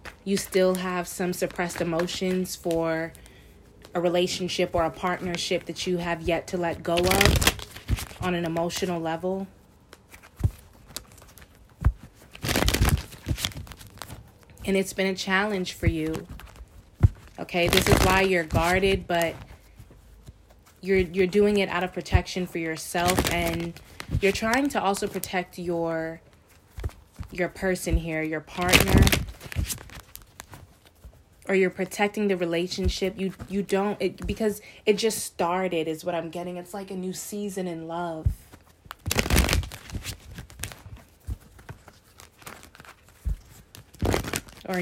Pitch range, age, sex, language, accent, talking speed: 110-185 Hz, 20-39, female, English, American, 110 wpm